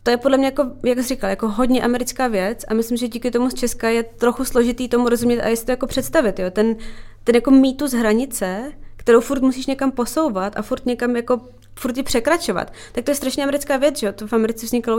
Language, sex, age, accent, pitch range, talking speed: Czech, female, 20-39, native, 210-245 Hz, 225 wpm